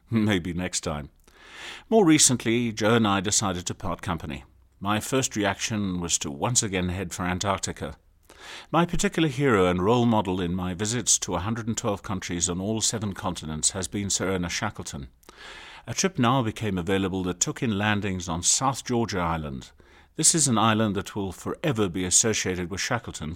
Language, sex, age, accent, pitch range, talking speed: English, male, 50-69, British, 90-115 Hz, 170 wpm